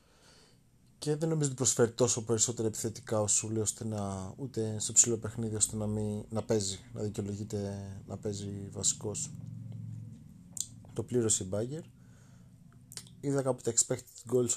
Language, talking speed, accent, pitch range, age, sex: Greek, 135 wpm, native, 100-120 Hz, 30-49, male